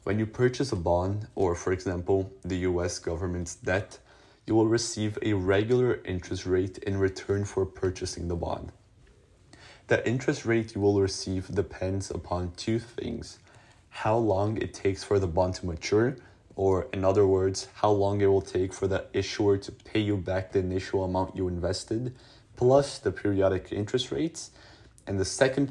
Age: 20-39